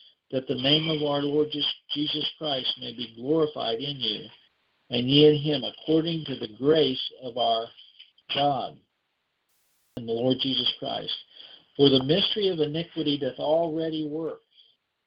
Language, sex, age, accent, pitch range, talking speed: English, male, 50-69, American, 130-160 Hz, 145 wpm